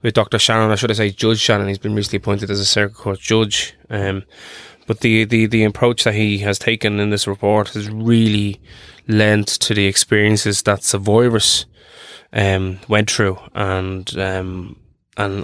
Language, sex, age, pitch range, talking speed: English, male, 20-39, 100-110 Hz, 180 wpm